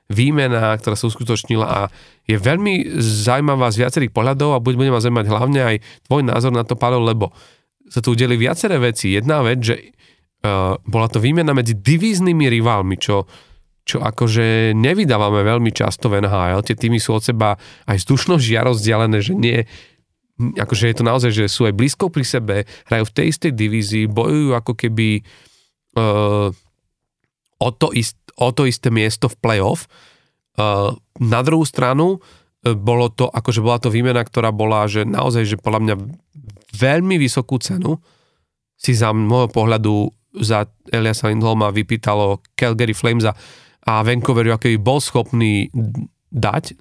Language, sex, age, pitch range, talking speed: Slovak, male, 40-59, 110-125 Hz, 150 wpm